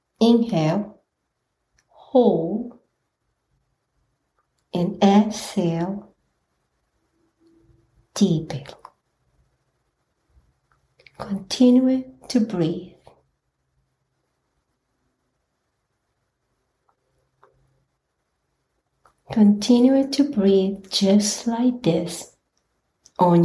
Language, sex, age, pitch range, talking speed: English, female, 60-79, 175-225 Hz, 40 wpm